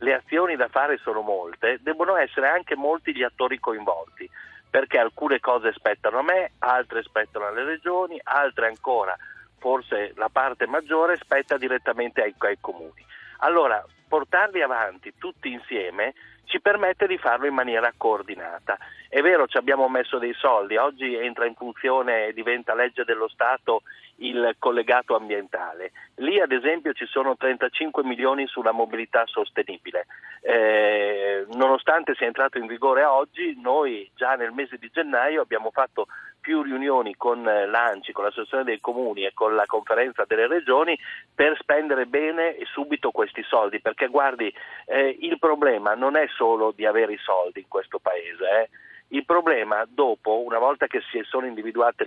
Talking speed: 155 wpm